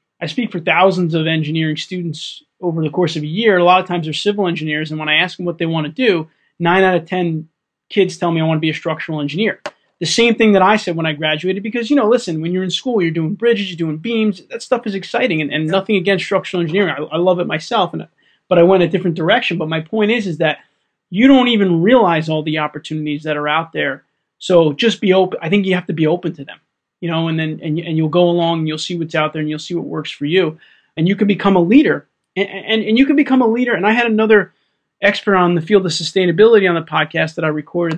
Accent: American